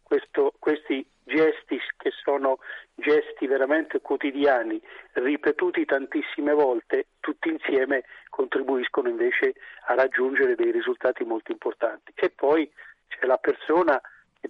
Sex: male